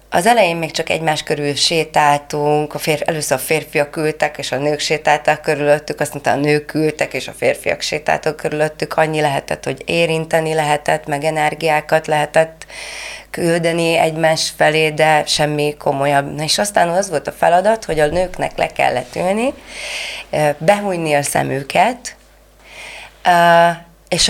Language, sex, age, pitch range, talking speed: Hungarian, female, 30-49, 150-190 Hz, 135 wpm